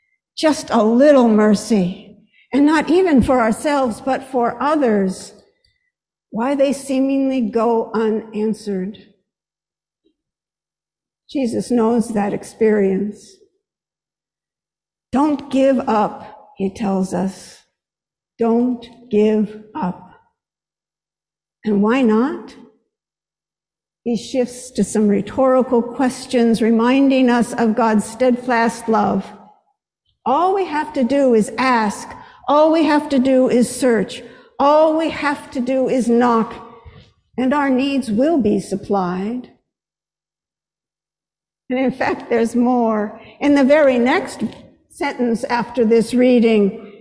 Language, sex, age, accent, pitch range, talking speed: English, female, 60-79, American, 220-270 Hz, 110 wpm